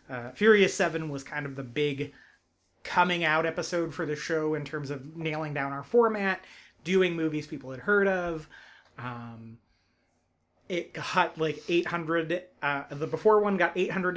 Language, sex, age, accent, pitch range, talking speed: English, male, 30-49, American, 135-185 Hz, 160 wpm